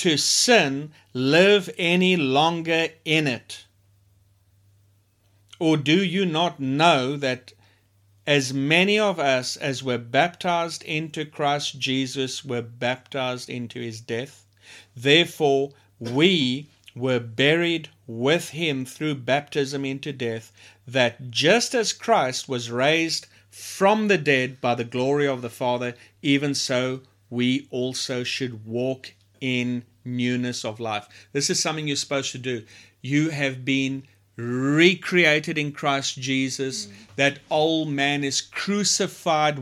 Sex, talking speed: male, 125 wpm